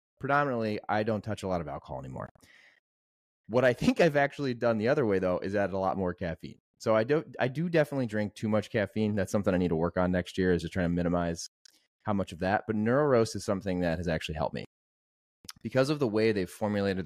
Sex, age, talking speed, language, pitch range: male, 30-49, 240 wpm, English, 85-110 Hz